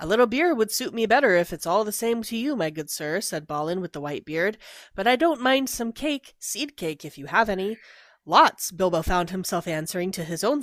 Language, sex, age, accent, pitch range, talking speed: English, female, 30-49, American, 155-210 Hz, 245 wpm